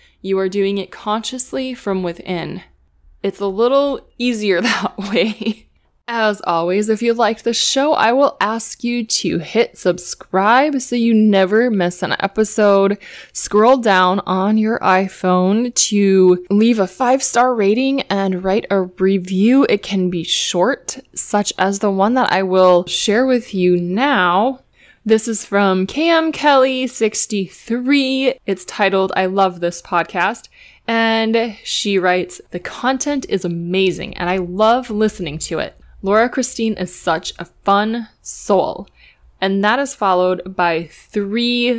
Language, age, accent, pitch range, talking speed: English, 20-39, American, 185-235 Hz, 140 wpm